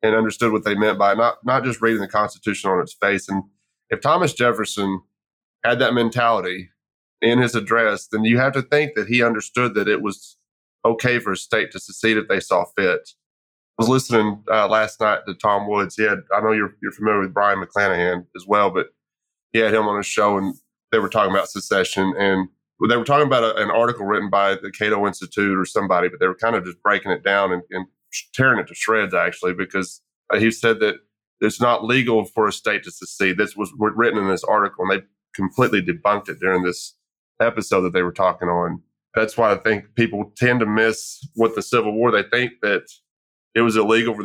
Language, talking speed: English, 220 wpm